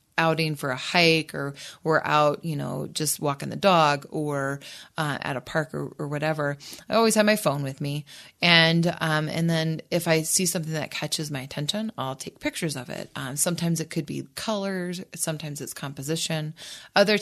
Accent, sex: American, female